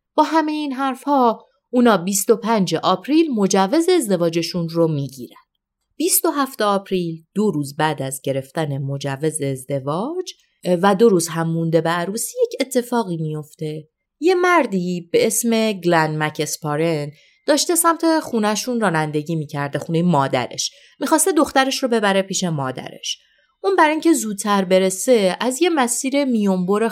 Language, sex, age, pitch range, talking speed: Persian, female, 30-49, 165-265 Hz, 130 wpm